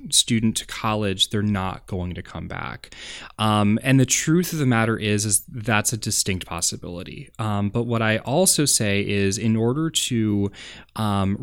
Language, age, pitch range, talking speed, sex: English, 20-39, 100-115 Hz, 175 wpm, male